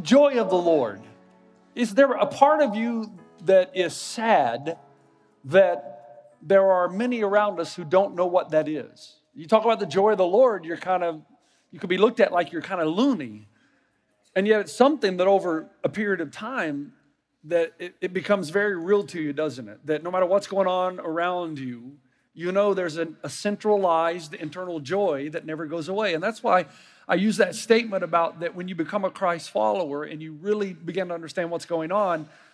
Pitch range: 160-210 Hz